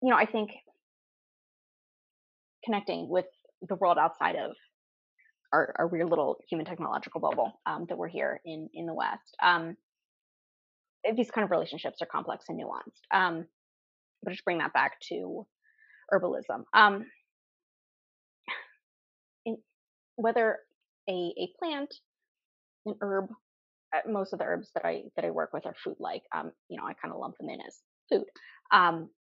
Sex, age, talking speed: female, 20-39, 155 wpm